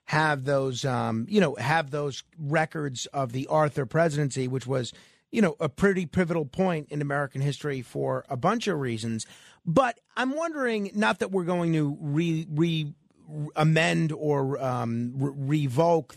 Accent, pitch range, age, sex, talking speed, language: American, 145-185 Hz, 40-59, male, 150 wpm, English